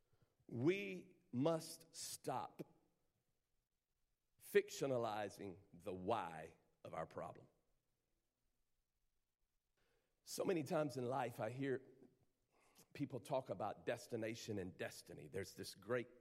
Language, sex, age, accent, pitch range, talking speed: English, male, 50-69, American, 100-140 Hz, 95 wpm